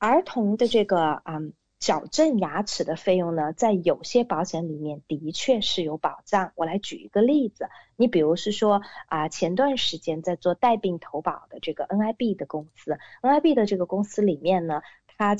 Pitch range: 160-220 Hz